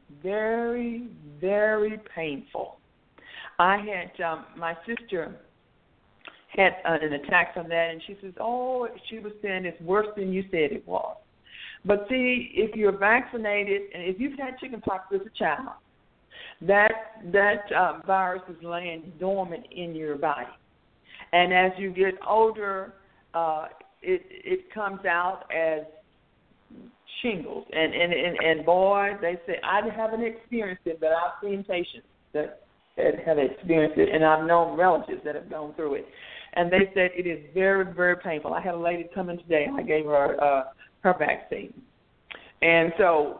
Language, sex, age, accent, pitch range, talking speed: English, female, 60-79, American, 170-220 Hz, 155 wpm